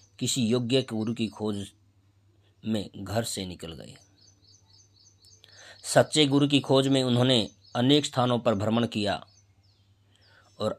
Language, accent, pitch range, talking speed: Hindi, native, 100-125 Hz, 120 wpm